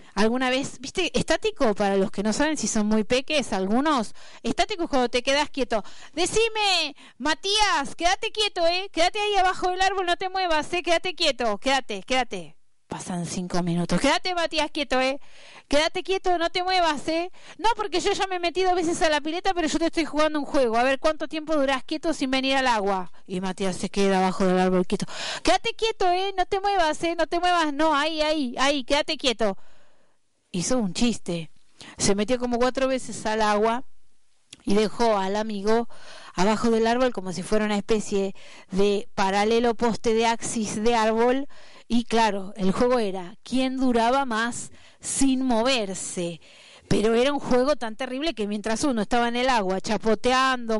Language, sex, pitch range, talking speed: Spanish, female, 210-310 Hz, 185 wpm